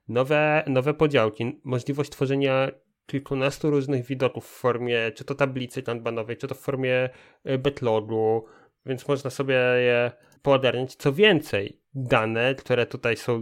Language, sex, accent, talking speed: Polish, male, native, 135 wpm